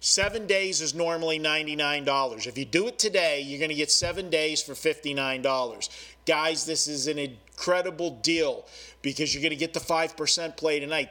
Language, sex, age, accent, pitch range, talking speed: English, male, 40-59, American, 145-175 Hz, 180 wpm